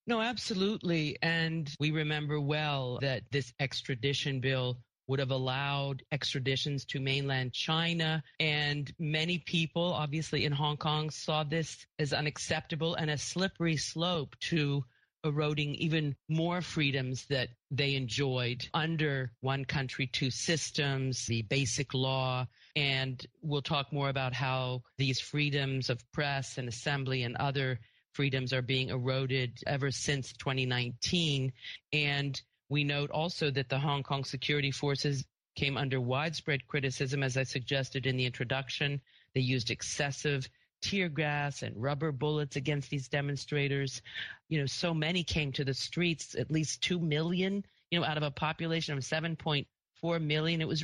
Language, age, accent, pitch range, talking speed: English, 40-59, American, 135-155 Hz, 145 wpm